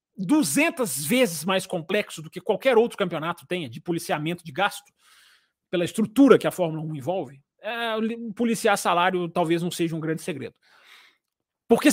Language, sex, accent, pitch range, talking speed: Portuguese, male, Brazilian, 170-240 Hz, 150 wpm